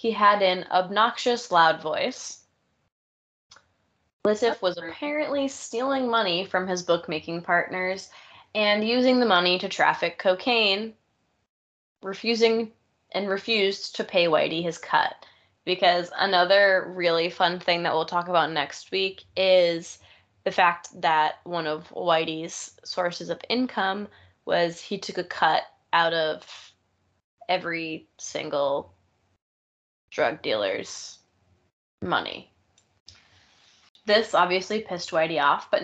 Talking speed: 115 wpm